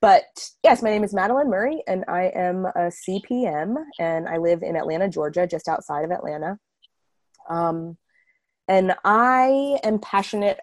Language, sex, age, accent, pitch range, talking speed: English, female, 20-39, American, 160-200 Hz, 150 wpm